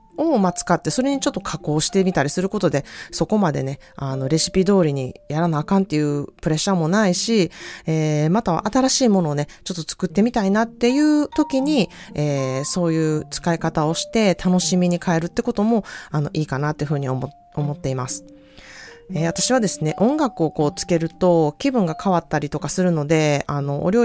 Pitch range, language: 145-200 Hz, Japanese